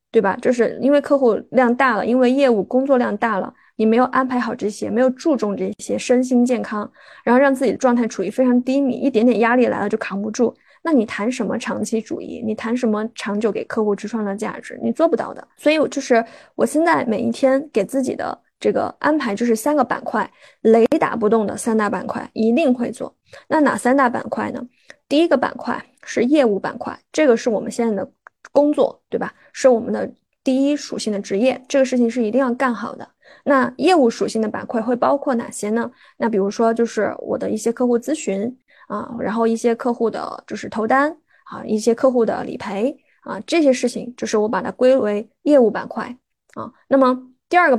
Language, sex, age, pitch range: Chinese, female, 20-39, 220-270 Hz